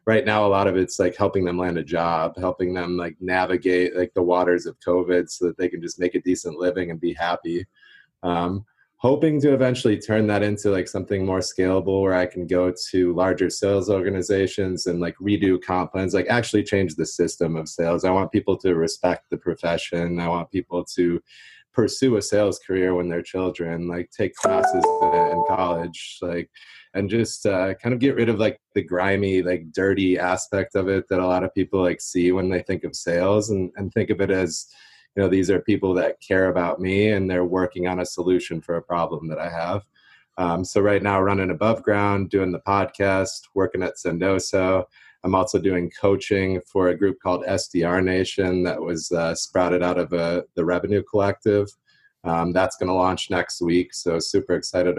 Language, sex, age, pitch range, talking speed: English, male, 20-39, 90-100 Hz, 200 wpm